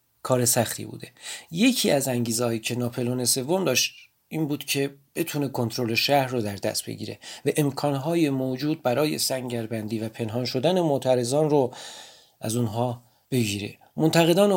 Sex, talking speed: male, 145 wpm